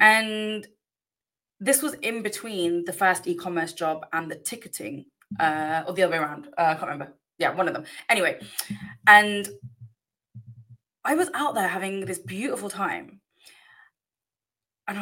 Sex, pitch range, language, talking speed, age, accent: female, 175-245 Hz, English, 150 wpm, 20-39, British